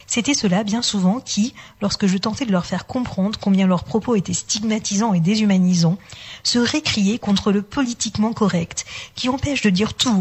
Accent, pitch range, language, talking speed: French, 180-225 Hz, French, 175 wpm